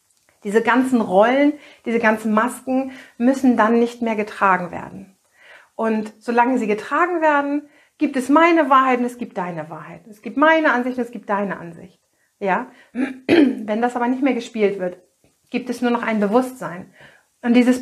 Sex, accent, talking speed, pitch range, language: female, German, 170 wpm, 220-275 Hz, German